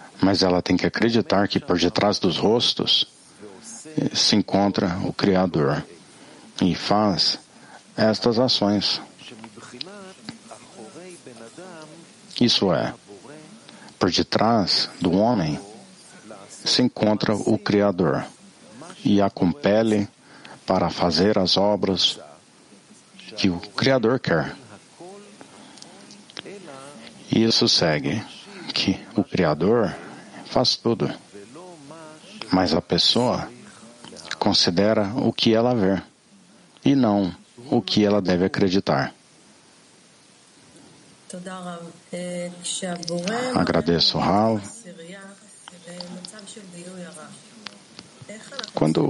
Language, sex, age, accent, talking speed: English, male, 60-79, Brazilian, 80 wpm